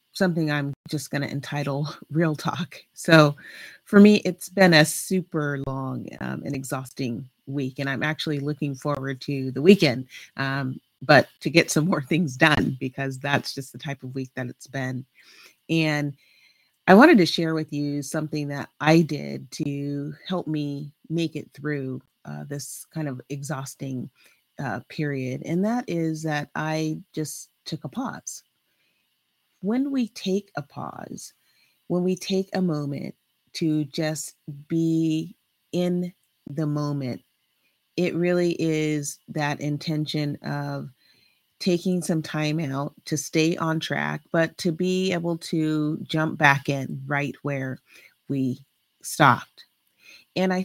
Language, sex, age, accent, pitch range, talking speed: English, female, 30-49, American, 140-165 Hz, 145 wpm